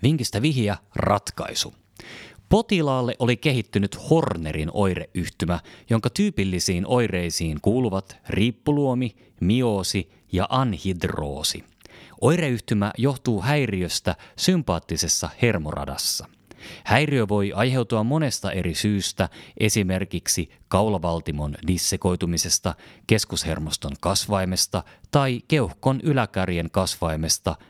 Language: Finnish